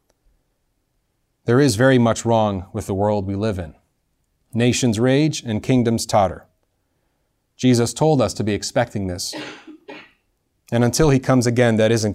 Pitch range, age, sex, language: 95-125 Hz, 30-49, male, English